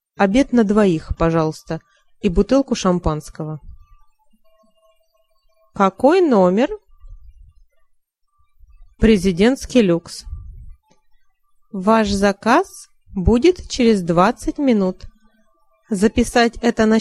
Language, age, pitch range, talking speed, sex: Russian, 20-39, 170-255 Hz, 70 wpm, female